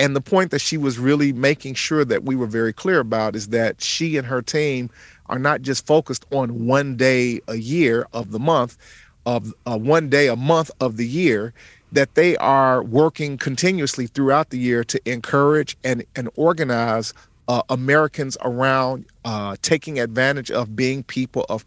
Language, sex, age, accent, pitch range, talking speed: English, male, 40-59, American, 120-145 Hz, 180 wpm